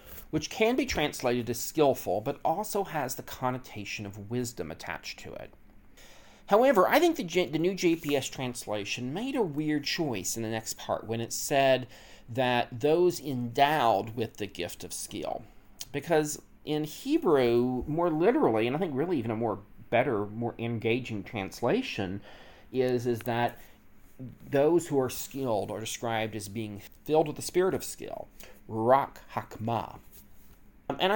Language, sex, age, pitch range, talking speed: English, male, 40-59, 115-155 Hz, 155 wpm